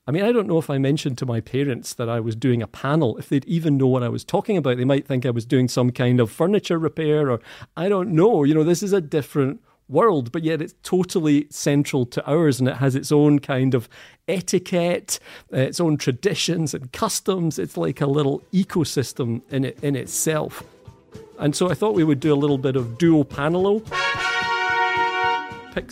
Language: English